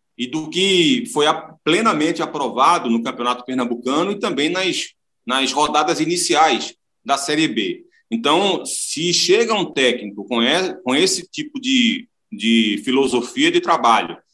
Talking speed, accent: 135 wpm, Brazilian